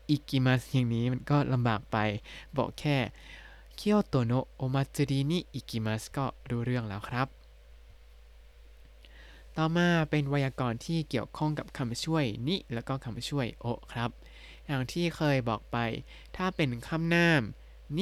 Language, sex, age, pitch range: Thai, male, 20-39, 115-155 Hz